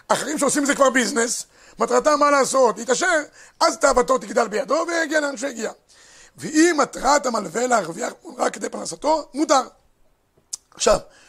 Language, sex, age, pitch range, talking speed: Hebrew, male, 50-69, 235-290 Hz, 135 wpm